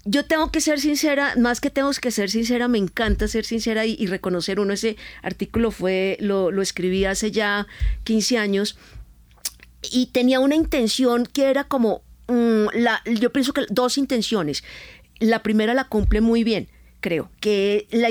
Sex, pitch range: female, 200-250 Hz